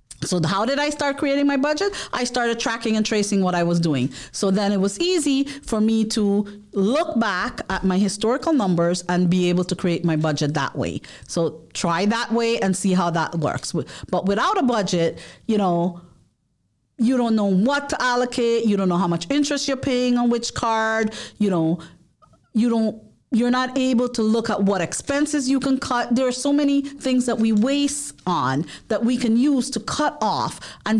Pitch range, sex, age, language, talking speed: 180-250 Hz, female, 40-59, English, 200 wpm